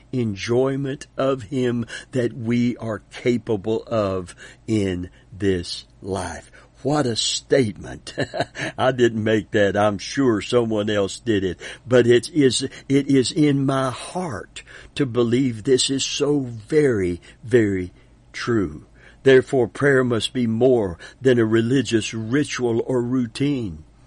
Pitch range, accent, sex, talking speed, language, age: 105-135 Hz, American, male, 125 wpm, English, 60-79